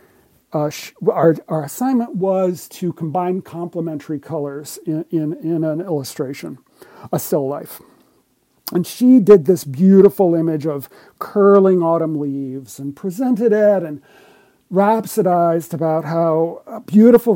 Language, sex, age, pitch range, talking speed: English, male, 50-69, 155-200 Hz, 125 wpm